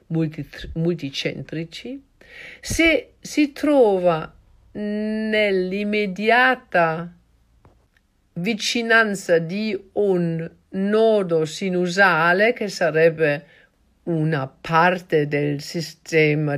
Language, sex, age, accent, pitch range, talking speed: Italian, female, 50-69, native, 155-220 Hz, 60 wpm